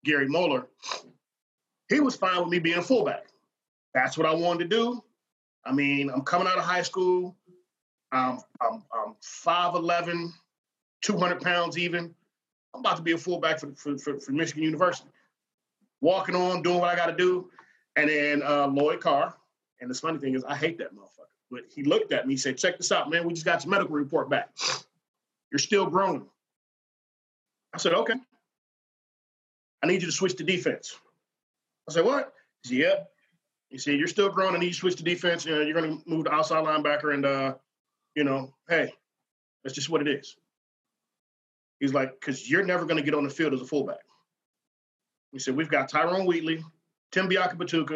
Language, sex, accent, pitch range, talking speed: English, male, American, 145-180 Hz, 190 wpm